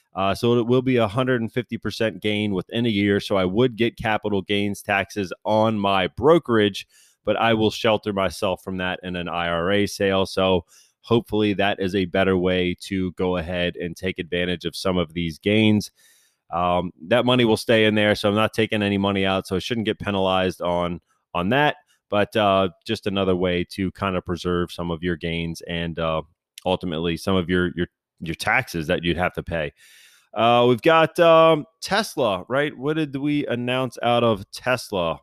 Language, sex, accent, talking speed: English, male, American, 190 wpm